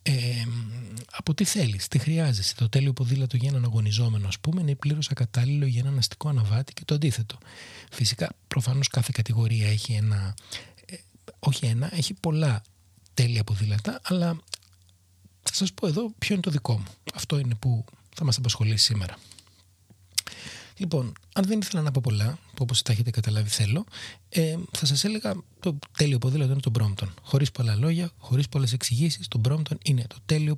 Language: Greek